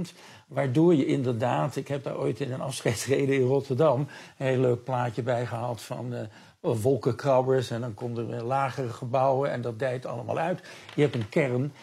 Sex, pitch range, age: male, 120-140 Hz, 50-69